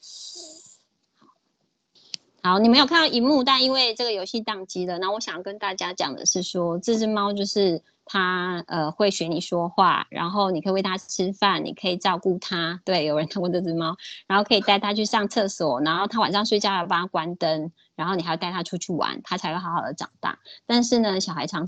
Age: 20-39